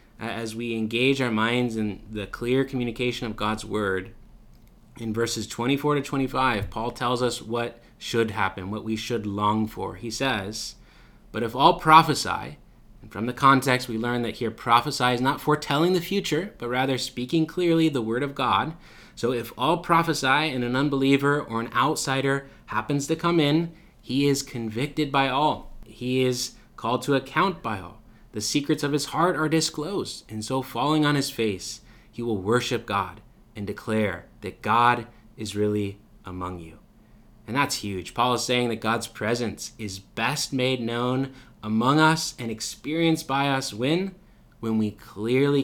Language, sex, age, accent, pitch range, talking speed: English, male, 20-39, American, 110-135 Hz, 170 wpm